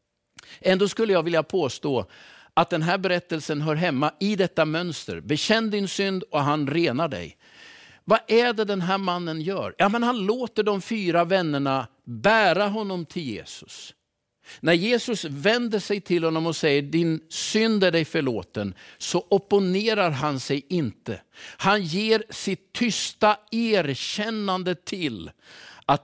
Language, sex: Swedish, male